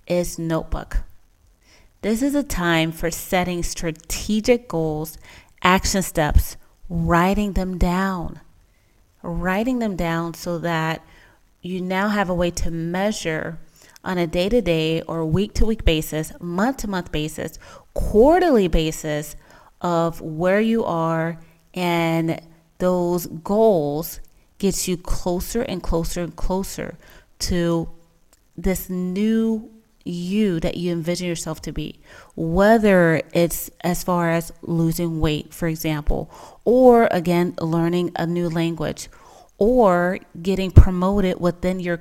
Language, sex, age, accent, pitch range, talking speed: English, female, 30-49, American, 165-195 Hz, 115 wpm